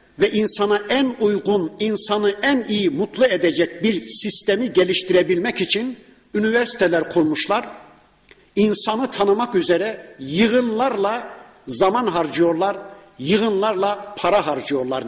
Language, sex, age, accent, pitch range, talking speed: Turkish, male, 50-69, native, 180-220 Hz, 95 wpm